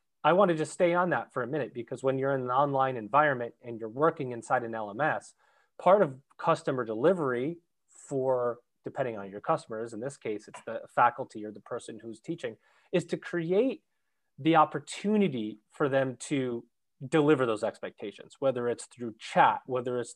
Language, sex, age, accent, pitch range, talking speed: English, male, 30-49, American, 120-160 Hz, 180 wpm